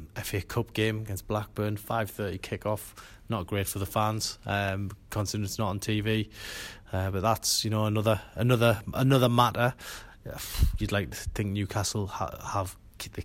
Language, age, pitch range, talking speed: English, 20-39, 95-110 Hz, 170 wpm